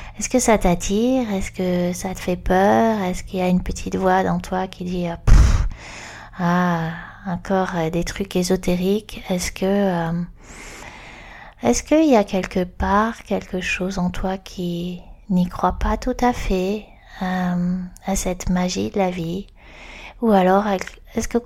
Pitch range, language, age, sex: 175-200 Hz, French, 20-39, female